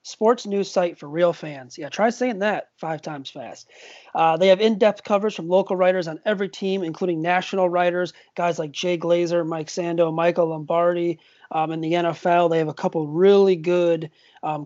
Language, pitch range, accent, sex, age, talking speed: English, 165-185 Hz, American, male, 30-49, 190 wpm